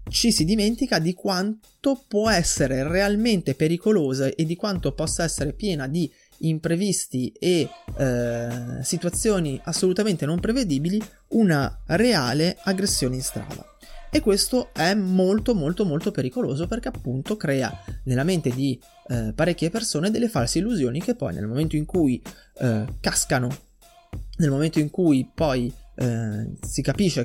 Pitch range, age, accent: 130-200 Hz, 20-39, native